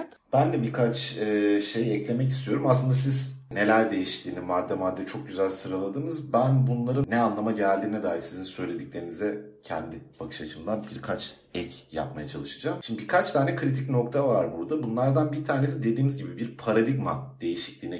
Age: 40-59